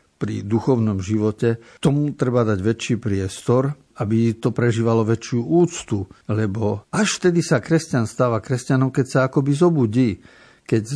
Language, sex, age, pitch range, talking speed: Slovak, male, 50-69, 110-140 Hz, 135 wpm